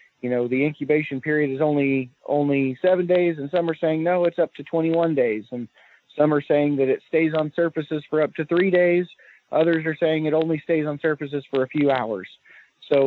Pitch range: 125-160 Hz